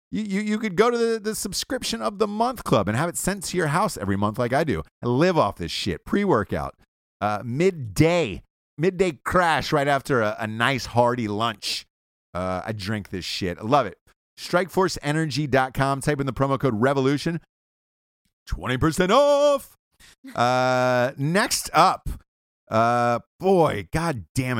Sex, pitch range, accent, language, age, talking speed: male, 105-170 Hz, American, English, 30-49, 160 wpm